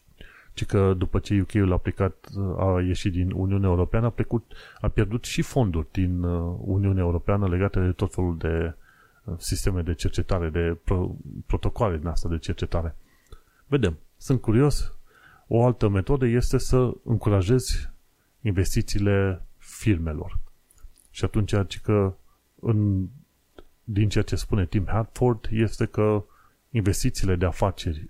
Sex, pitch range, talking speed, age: male, 90-110 Hz, 130 wpm, 30-49